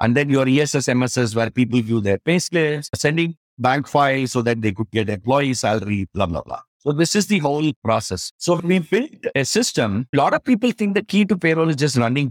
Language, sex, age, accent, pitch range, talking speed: English, male, 50-69, Indian, 120-160 Hz, 225 wpm